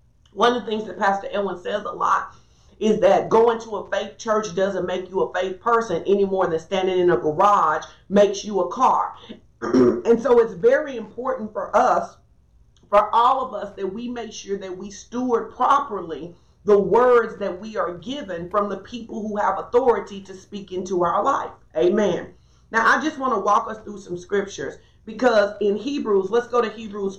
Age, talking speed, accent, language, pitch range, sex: 40-59, 195 wpm, American, English, 190-230 Hz, female